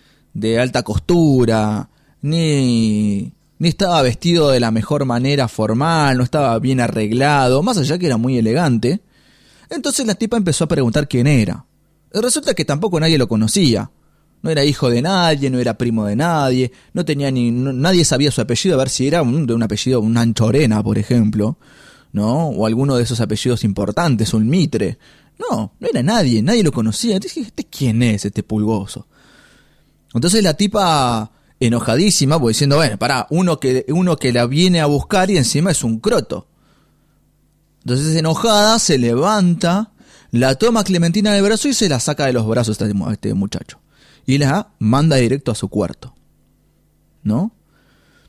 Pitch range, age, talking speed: 115-170 Hz, 20-39, 170 wpm